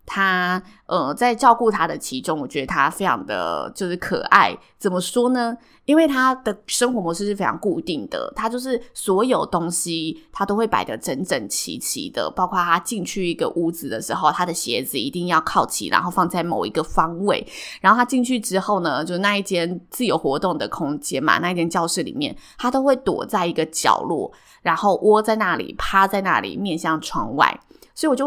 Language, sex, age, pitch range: Chinese, female, 20-39, 170-230 Hz